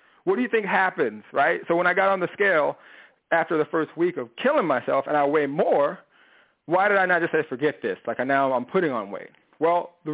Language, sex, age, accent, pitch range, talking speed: English, male, 40-59, American, 140-185 Hz, 235 wpm